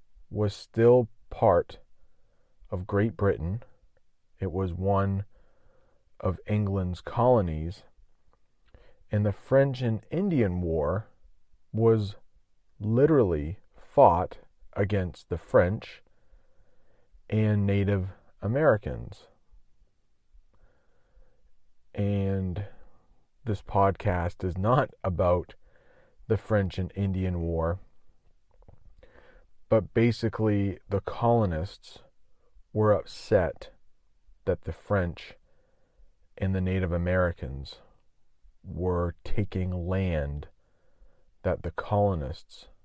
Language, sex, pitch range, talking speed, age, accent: English, male, 90-110 Hz, 80 wpm, 40-59, American